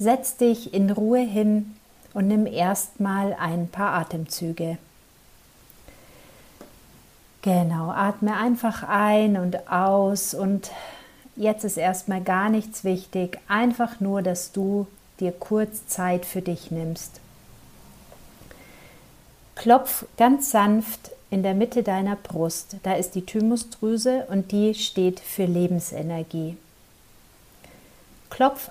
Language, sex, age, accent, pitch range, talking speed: German, female, 50-69, German, 180-220 Hz, 110 wpm